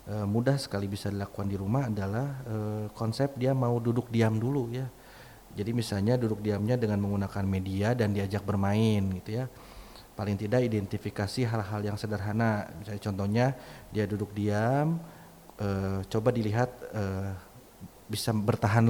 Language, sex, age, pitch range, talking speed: Indonesian, male, 30-49, 100-125 Hz, 140 wpm